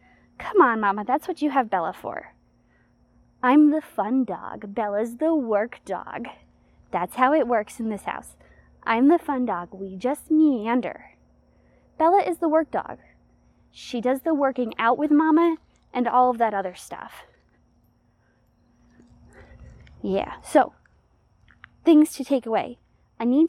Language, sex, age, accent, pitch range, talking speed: English, female, 20-39, American, 225-305 Hz, 145 wpm